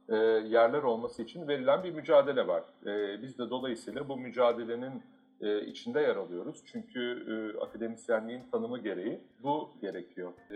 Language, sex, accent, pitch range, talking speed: Turkish, male, native, 110-185 Hz, 120 wpm